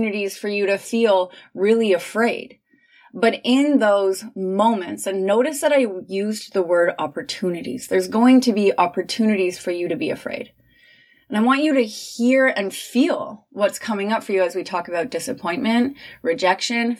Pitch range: 185-240 Hz